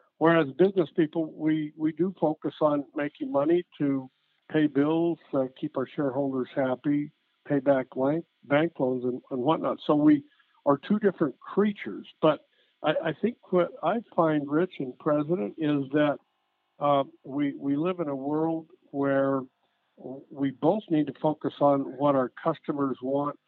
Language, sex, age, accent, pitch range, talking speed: English, male, 60-79, American, 130-160 Hz, 155 wpm